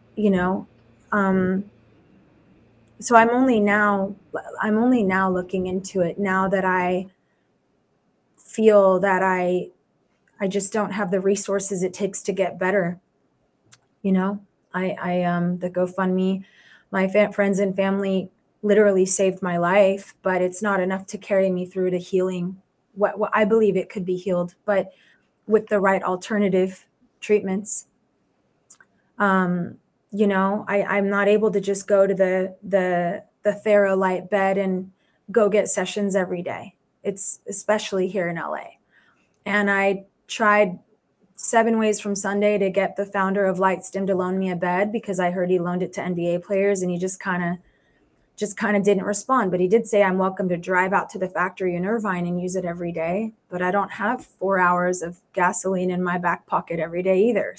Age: 20-39